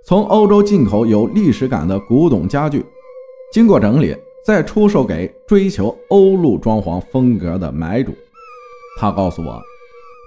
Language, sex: Chinese, male